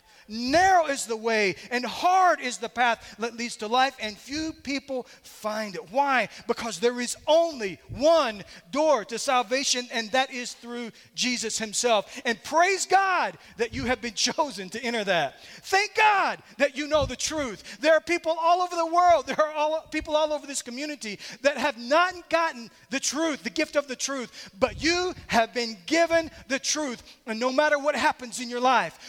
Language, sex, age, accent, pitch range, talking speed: English, male, 30-49, American, 225-315 Hz, 190 wpm